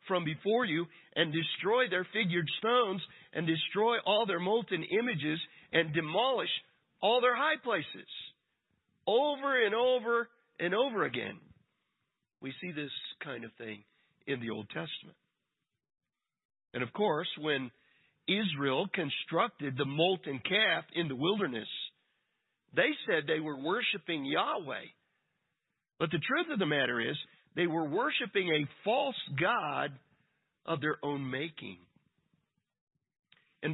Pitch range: 155-215 Hz